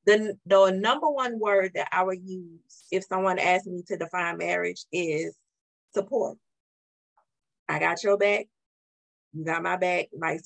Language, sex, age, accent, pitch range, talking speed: English, female, 20-39, American, 170-210 Hz, 155 wpm